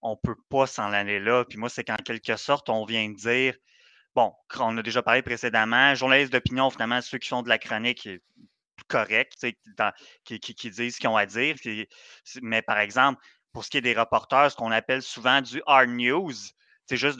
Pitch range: 110-130 Hz